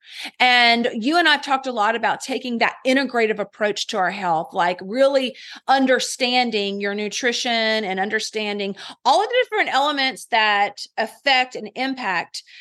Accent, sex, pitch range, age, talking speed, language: American, female, 210-260 Hz, 30-49, 150 wpm, English